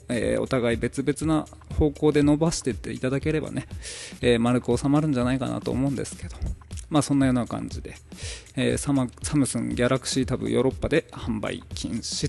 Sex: male